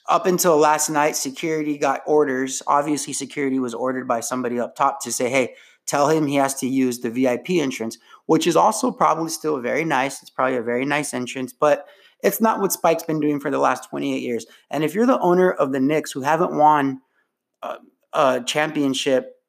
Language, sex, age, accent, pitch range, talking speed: English, male, 30-49, American, 140-225 Hz, 205 wpm